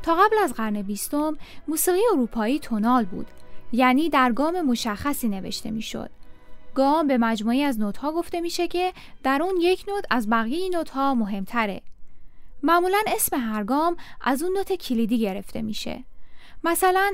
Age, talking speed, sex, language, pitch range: 10-29, 145 wpm, female, Persian, 225-320 Hz